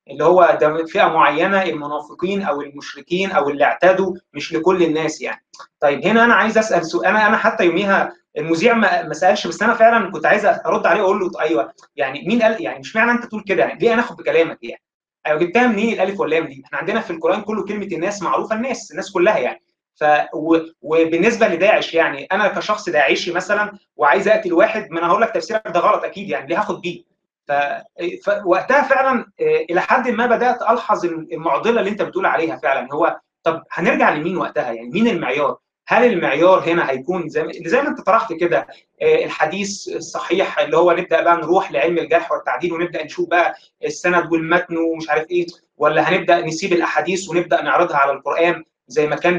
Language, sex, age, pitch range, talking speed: Arabic, male, 20-39, 165-210 Hz, 190 wpm